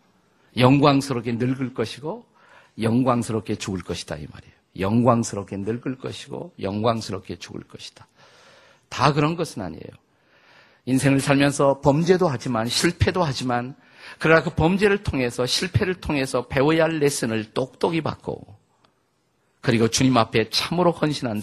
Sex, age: male, 50-69